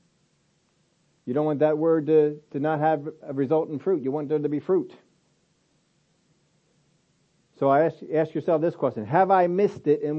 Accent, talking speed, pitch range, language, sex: American, 185 wpm, 150-175 Hz, English, male